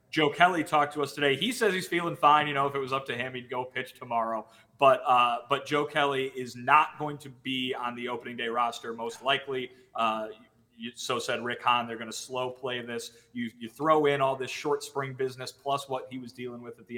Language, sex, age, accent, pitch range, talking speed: English, male, 30-49, American, 115-145 Hz, 245 wpm